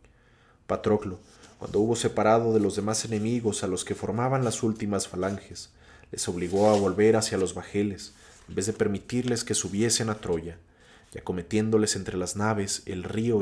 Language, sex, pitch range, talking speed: Spanish, male, 95-110 Hz, 165 wpm